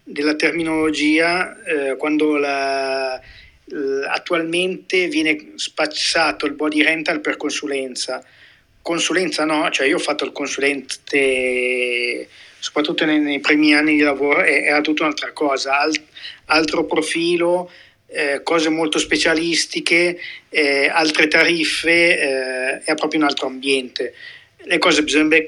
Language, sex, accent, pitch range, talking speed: Italian, male, native, 135-155 Hz, 125 wpm